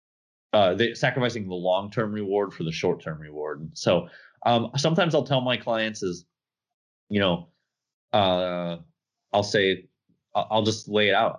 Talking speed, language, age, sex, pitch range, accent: 150 wpm, English, 20-39, male, 95-120 Hz, American